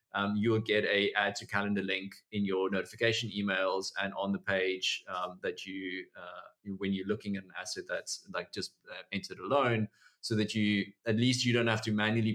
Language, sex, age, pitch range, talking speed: English, male, 20-39, 95-110 Hz, 210 wpm